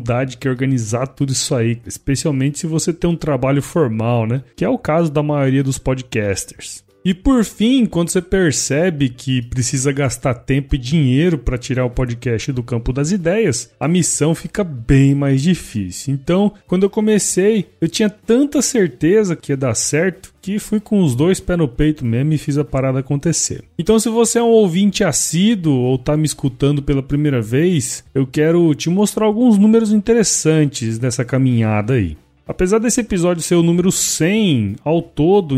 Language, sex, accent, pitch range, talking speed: Portuguese, male, Brazilian, 135-195 Hz, 180 wpm